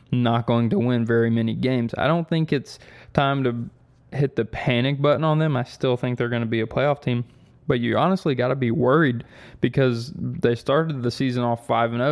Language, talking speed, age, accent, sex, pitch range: English, 220 wpm, 20-39, American, male, 115-130 Hz